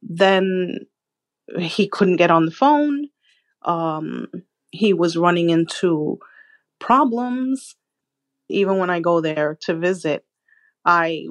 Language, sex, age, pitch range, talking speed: English, female, 30-49, 165-205 Hz, 110 wpm